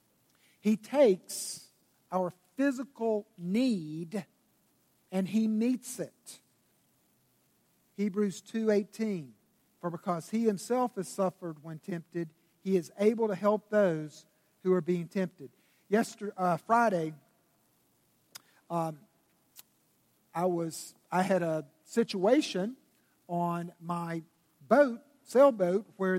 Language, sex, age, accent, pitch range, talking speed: English, male, 50-69, American, 175-220 Hz, 105 wpm